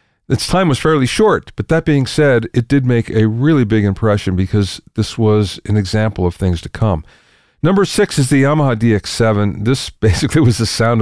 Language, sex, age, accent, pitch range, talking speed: English, male, 40-59, American, 105-135 Hz, 195 wpm